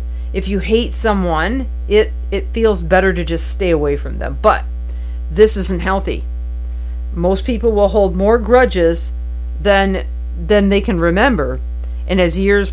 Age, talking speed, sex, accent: 50-69, 150 wpm, female, American